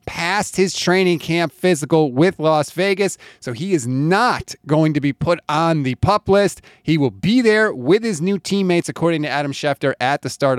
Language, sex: English, male